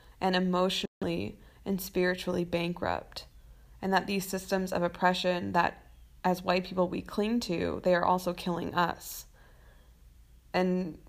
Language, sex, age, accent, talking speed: English, female, 20-39, American, 130 wpm